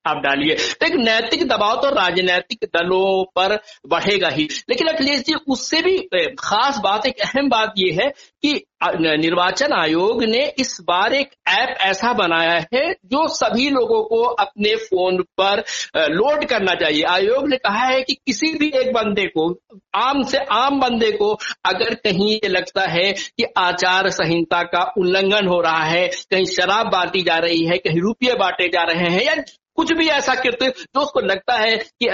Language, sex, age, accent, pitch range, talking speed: Hindi, male, 60-79, native, 185-270 Hz, 180 wpm